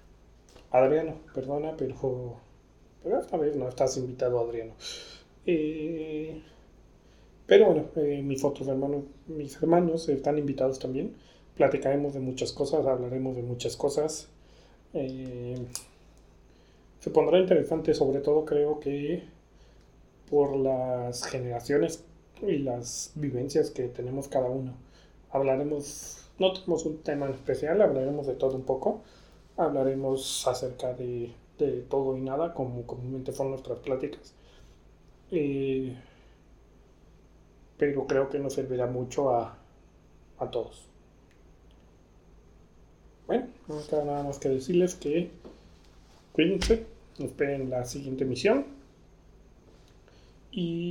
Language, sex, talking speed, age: Spanish, male, 115 wpm, 30-49